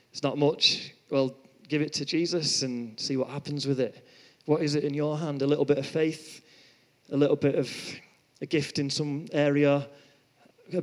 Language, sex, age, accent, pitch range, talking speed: English, male, 30-49, British, 140-170 Hz, 195 wpm